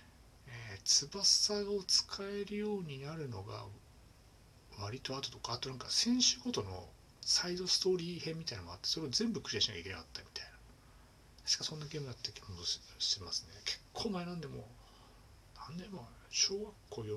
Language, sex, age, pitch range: Japanese, male, 60-79, 100-155 Hz